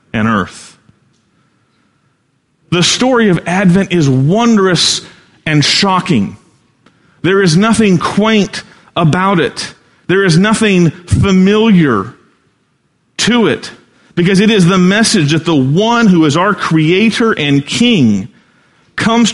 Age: 40-59